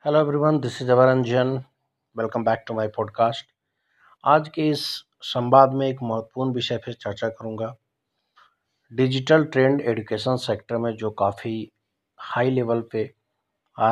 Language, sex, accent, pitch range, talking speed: English, male, Indian, 115-135 Hz, 140 wpm